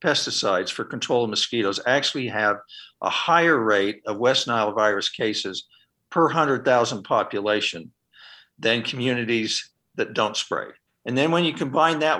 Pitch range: 120-155 Hz